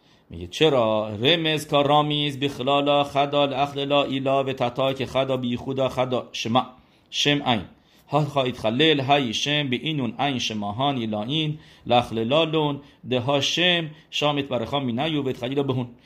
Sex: male